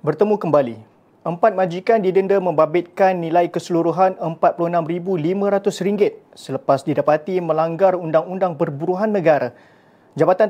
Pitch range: 160-190 Hz